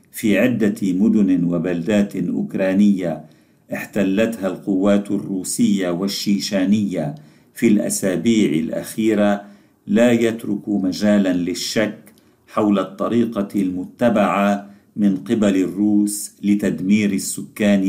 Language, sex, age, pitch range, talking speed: Arabic, male, 50-69, 95-110 Hz, 80 wpm